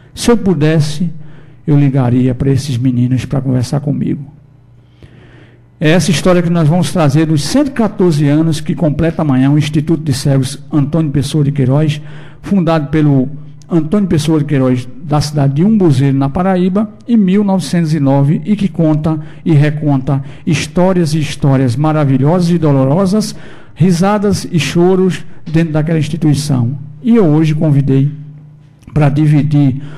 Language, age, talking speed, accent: Portuguese, 60-79, 140 wpm, Brazilian